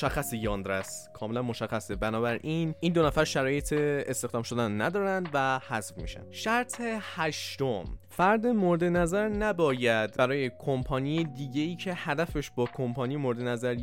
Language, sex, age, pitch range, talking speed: Persian, male, 20-39, 110-155 Hz, 130 wpm